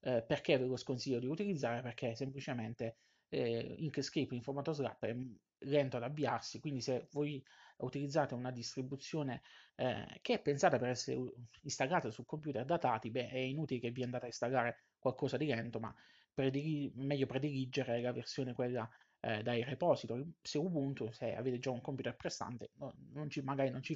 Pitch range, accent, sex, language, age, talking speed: 125-145 Hz, native, male, Italian, 20-39, 165 wpm